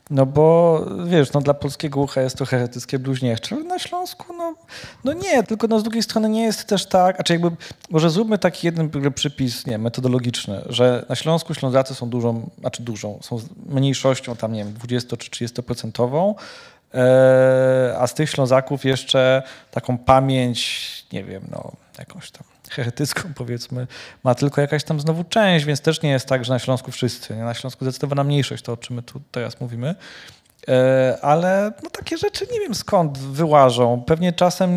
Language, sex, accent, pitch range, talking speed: Polish, male, native, 120-155 Hz, 175 wpm